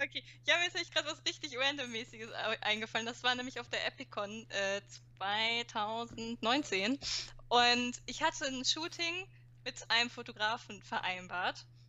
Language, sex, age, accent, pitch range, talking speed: German, female, 10-29, German, 190-255 Hz, 135 wpm